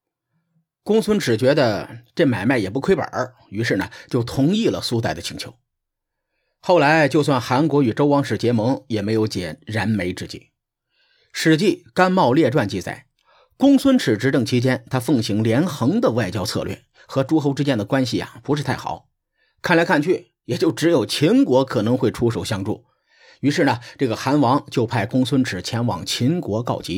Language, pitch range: Chinese, 115-160 Hz